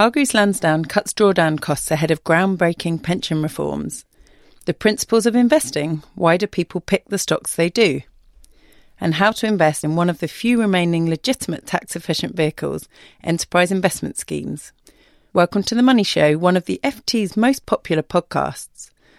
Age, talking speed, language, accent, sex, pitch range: 40-59, 155 wpm, English, British, female, 160-210 Hz